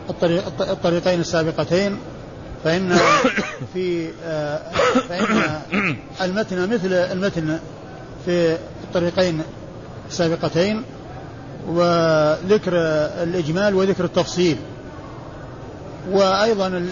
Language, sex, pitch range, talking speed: Arabic, male, 155-180 Hz, 55 wpm